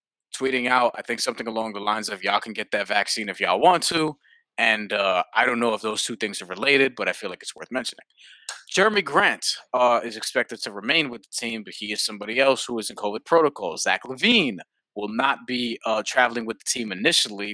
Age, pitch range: 20-39, 110-135 Hz